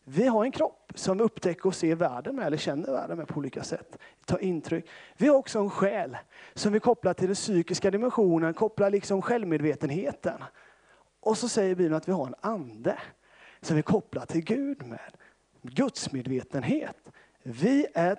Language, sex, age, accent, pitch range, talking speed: Swedish, male, 30-49, native, 175-225 Hz, 180 wpm